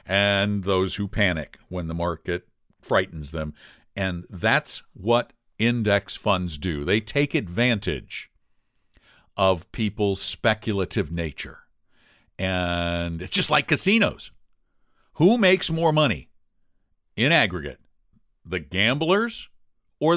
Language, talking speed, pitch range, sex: English, 105 wpm, 95-140 Hz, male